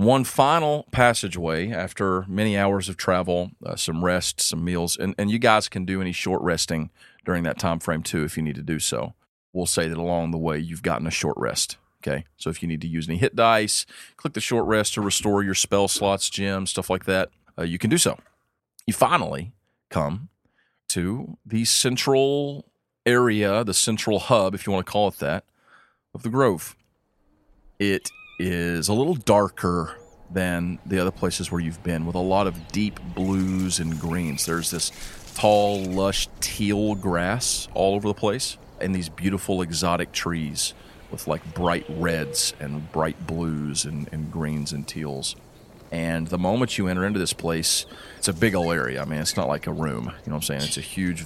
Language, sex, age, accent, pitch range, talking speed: English, male, 40-59, American, 85-100 Hz, 195 wpm